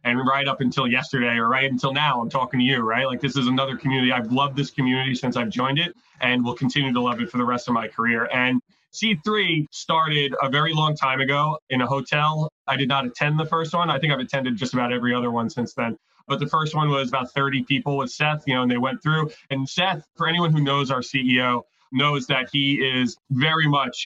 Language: English